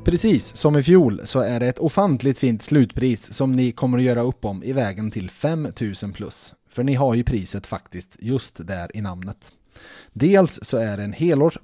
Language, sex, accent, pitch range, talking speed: Swedish, male, Norwegian, 110-145 Hz, 200 wpm